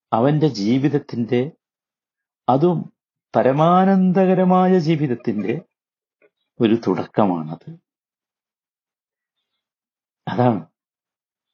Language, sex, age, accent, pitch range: Malayalam, male, 60-79, native, 125-180 Hz